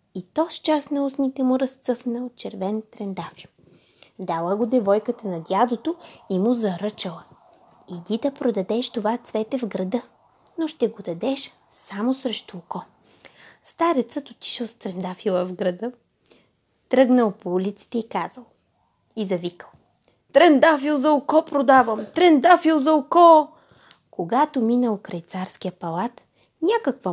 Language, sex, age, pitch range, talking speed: Bulgarian, female, 20-39, 190-270 Hz, 130 wpm